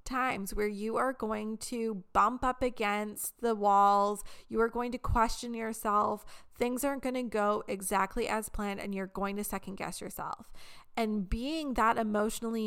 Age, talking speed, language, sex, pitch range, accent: 20-39, 170 wpm, English, female, 205-240 Hz, American